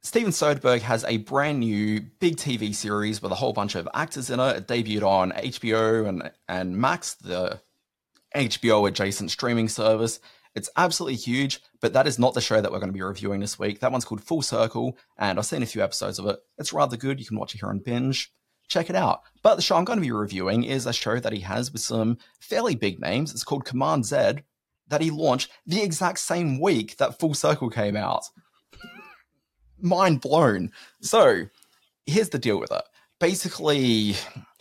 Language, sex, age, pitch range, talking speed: English, male, 30-49, 105-140 Hz, 200 wpm